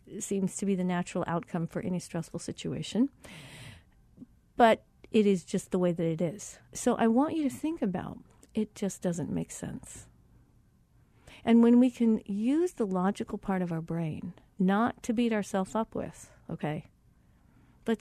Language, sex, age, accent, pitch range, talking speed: English, female, 50-69, American, 185-235 Hz, 165 wpm